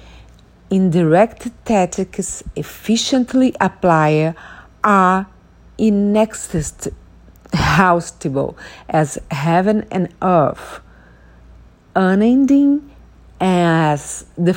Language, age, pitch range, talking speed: English, 40-59, 155-220 Hz, 55 wpm